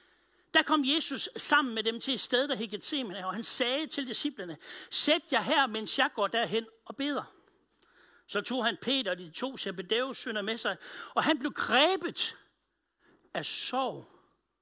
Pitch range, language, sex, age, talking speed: 225-325 Hz, Danish, male, 60-79, 170 wpm